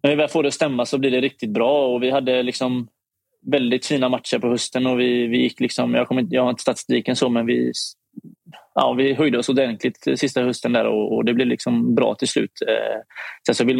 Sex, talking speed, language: male, 235 wpm, Swedish